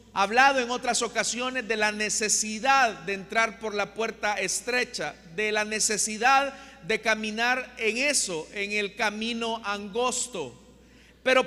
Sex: male